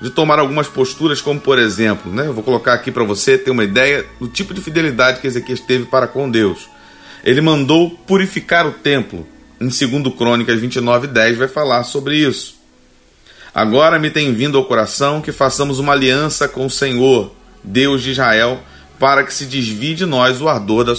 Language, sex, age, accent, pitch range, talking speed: Portuguese, male, 40-59, Brazilian, 120-150 Hz, 190 wpm